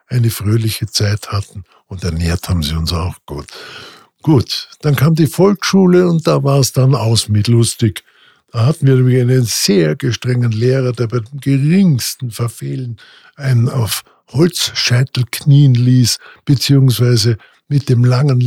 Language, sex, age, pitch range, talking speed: German, male, 60-79, 115-140 Hz, 150 wpm